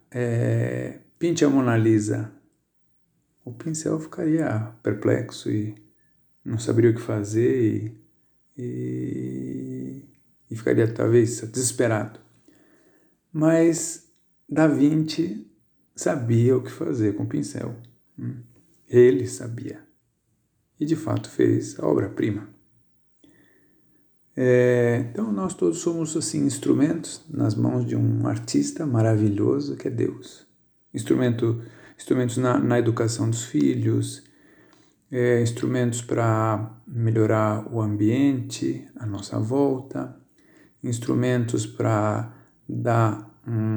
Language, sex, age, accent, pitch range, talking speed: Portuguese, male, 50-69, Brazilian, 110-140 Hz, 100 wpm